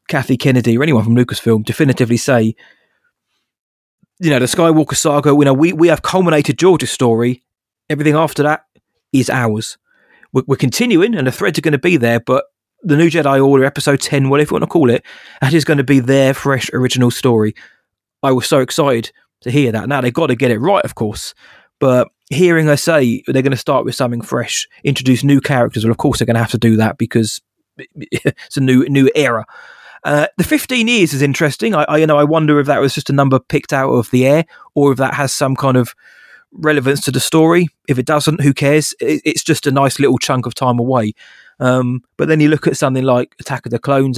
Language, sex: English, male